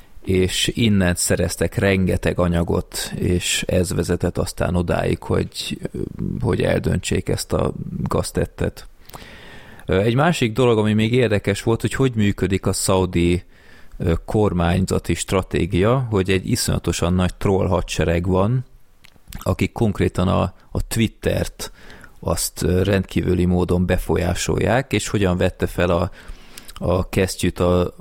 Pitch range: 90-105 Hz